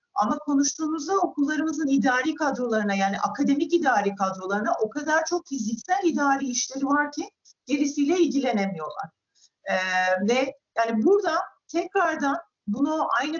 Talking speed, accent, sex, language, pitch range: 115 wpm, native, female, Turkish, 260-315 Hz